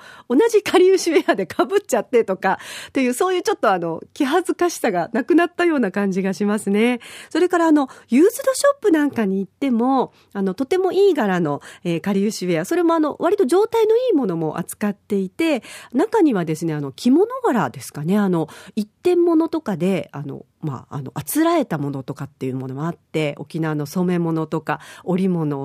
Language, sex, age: Japanese, female, 40-59